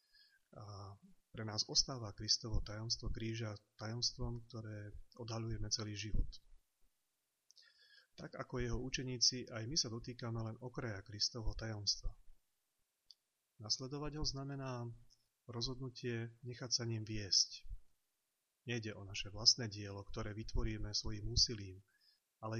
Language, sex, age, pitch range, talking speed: Slovak, male, 30-49, 105-125 Hz, 110 wpm